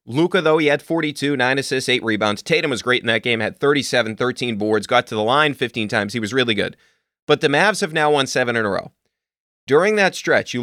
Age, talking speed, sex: 30-49, 245 wpm, male